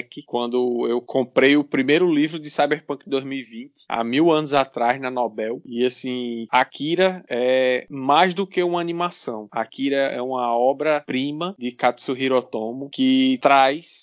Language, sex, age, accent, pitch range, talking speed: Portuguese, male, 20-39, Brazilian, 125-155 Hz, 140 wpm